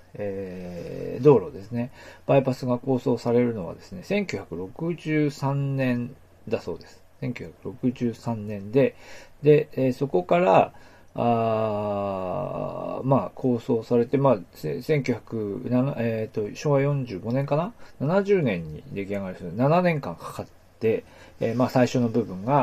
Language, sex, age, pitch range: Japanese, male, 40-59, 105-140 Hz